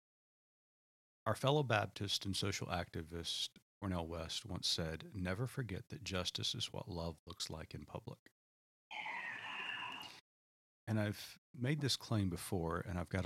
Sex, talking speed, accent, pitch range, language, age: male, 135 wpm, American, 90-120 Hz, English, 40-59